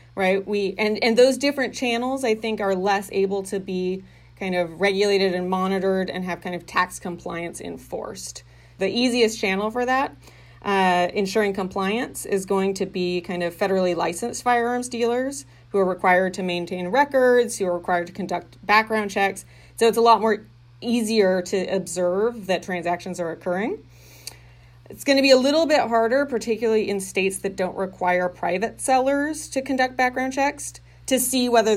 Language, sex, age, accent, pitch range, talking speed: English, female, 30-49, American, 180-220 Hz, 175 wpm